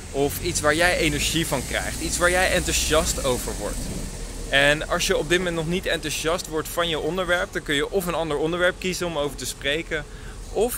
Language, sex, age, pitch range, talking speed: Dutch, male, 20-39, 125-160 Hz, 215 wpm